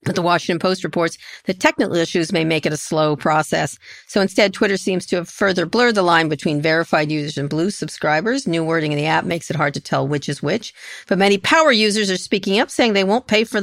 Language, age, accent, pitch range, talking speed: English, 50-69, American, 165-200 Hz, 240 wpm